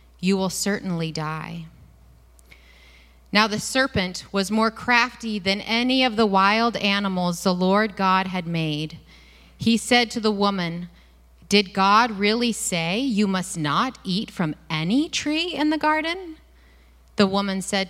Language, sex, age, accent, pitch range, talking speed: English, female, 30-49, American, 155-215 Hz, 145 wpm